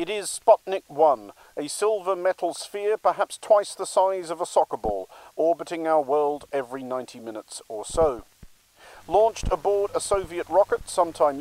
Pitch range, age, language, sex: 150-195 Hz, 50-69, English, male